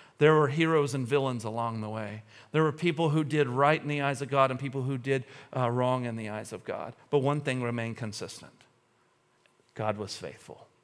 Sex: male